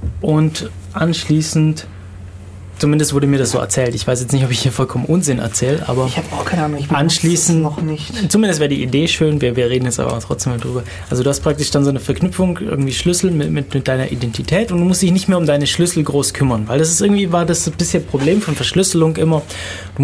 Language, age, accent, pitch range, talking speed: German, 20-39, German, 120-160 Hz, 220 wpm